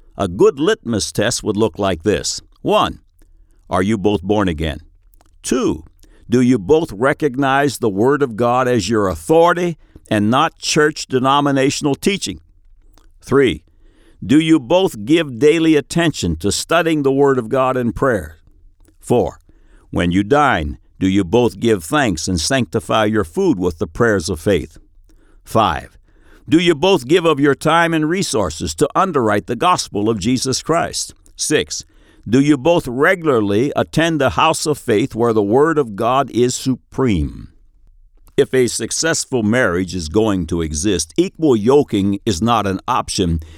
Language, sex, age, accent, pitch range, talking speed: English, male, 60-79, American, 90-140 Hz, 155 wpm